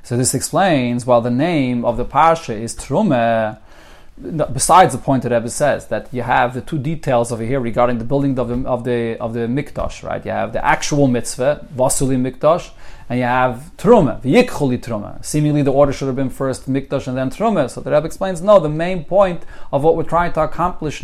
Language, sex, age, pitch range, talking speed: English, male, 30-49, 135-200 Hz, 215 wpm